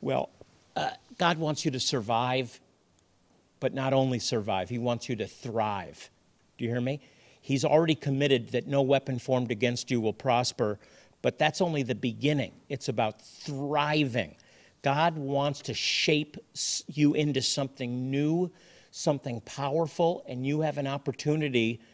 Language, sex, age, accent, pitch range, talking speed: English, male, 50-69, American, 120-145 Hz, 150 wpm